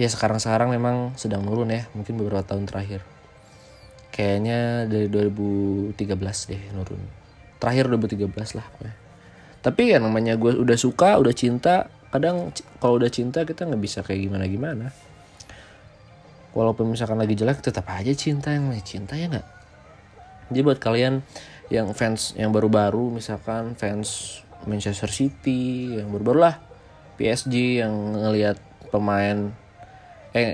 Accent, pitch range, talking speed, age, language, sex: native, 100-120 Hz, 130 wpm, 20-39, Indonesian, male